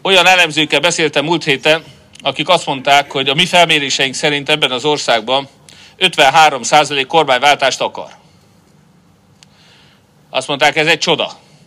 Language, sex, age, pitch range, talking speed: Hungarian, male, 40-59, 140-170 Hz, 130 wpm